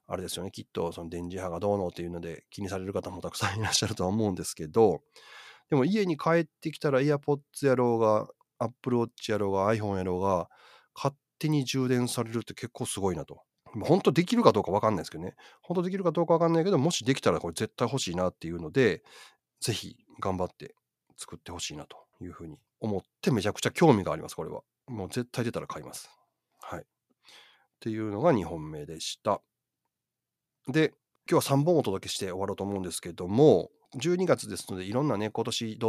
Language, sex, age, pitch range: Japanese, male, 30-49, 100-155 Hz